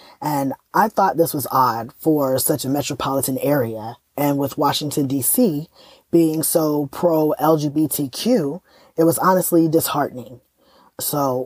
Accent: American